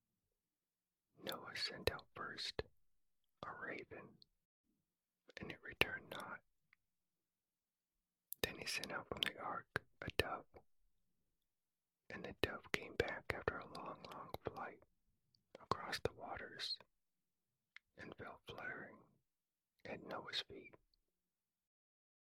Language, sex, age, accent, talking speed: English, male, 40-59, American, 100 wpm